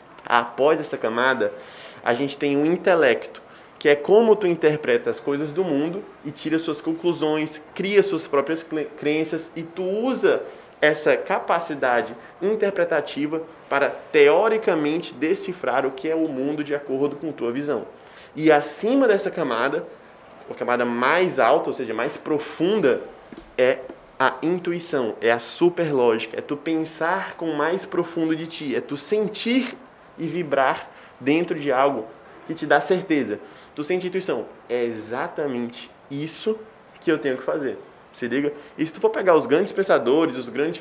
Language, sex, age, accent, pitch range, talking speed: Portuguese, male, 20-39, Brazilian, 145-205 Hz, 155 wpm